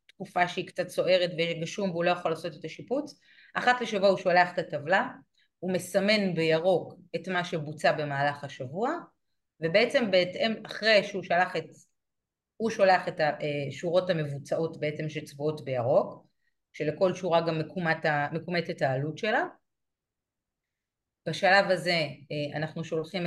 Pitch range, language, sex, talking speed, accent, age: 155-195 Hz, Hebrew, female, 130 wpm, native, 30-49